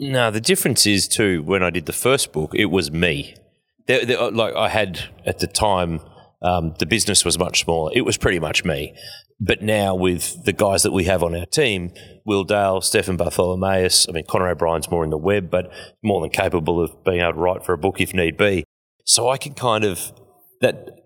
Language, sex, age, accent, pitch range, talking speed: English, male, 30-49, Australian, 85-100 Hz, 215 wpm